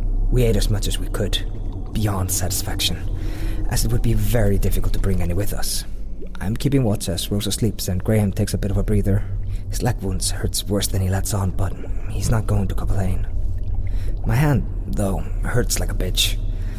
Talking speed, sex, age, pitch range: 200 wpm, male, 30-49, 95-105 Hz